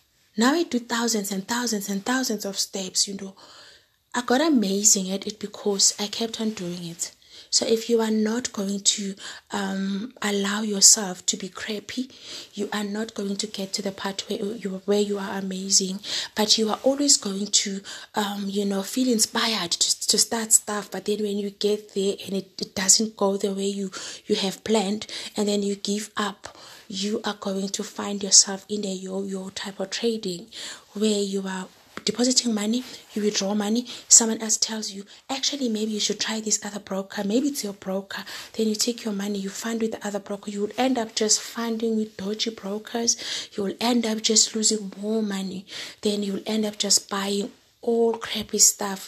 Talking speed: 200 wpm